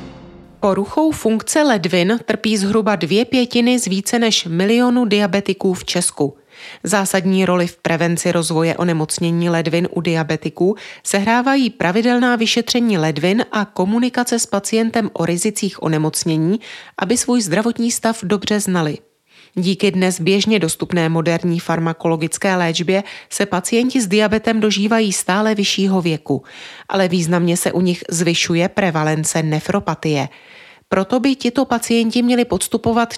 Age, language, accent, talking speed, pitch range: 30-49, Czech, native, 125 wpm, 165-220 Hz